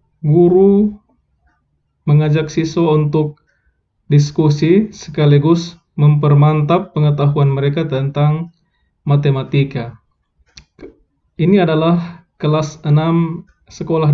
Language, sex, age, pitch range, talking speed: Indonesian, male, 20-39, 130-170 Hz, 70 wpm